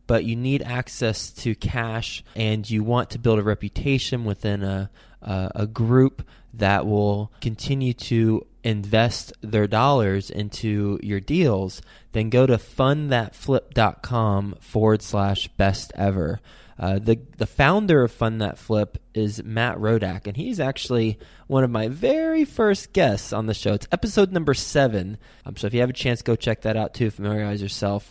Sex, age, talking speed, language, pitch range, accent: male, 20-39, 165 wpm, English, 100-120 Hz, American